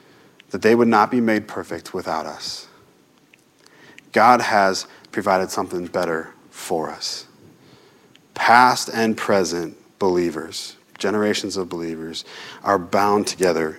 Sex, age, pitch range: male, 30-49, 95-110 Hz